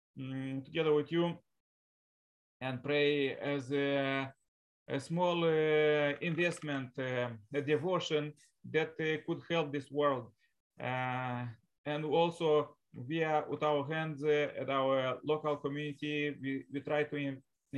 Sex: male